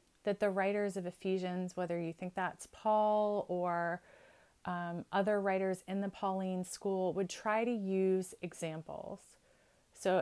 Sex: female